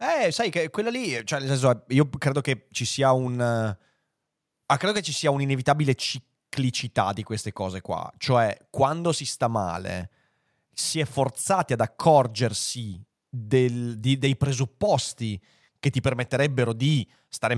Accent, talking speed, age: native, 140 wpm, 30-49